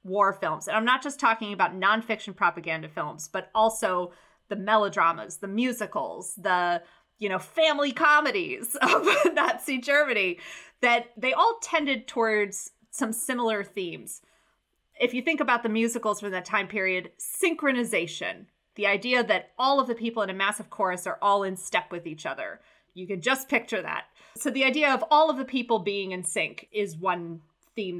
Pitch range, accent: 200-260 Hz, American